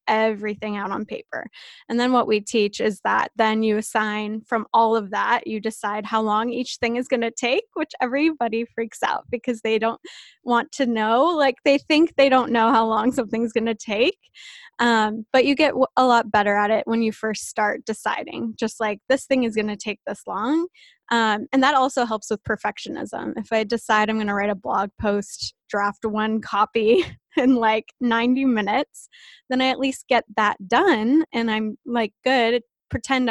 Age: 10-29